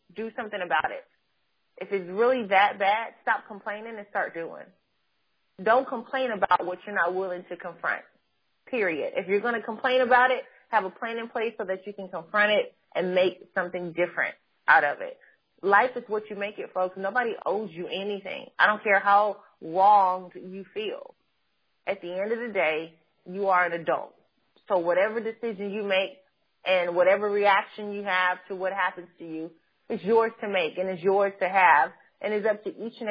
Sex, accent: female, American